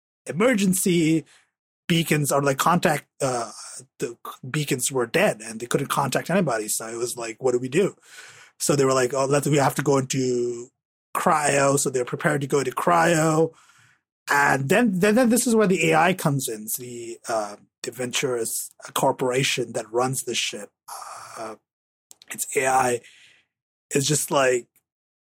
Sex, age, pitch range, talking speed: male, 30-49, 125-160 Hz, 165 wpm